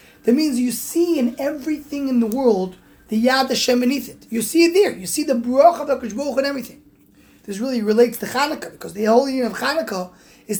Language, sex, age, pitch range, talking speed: English, male, 20-39, 230-290 Hz, 220 wpm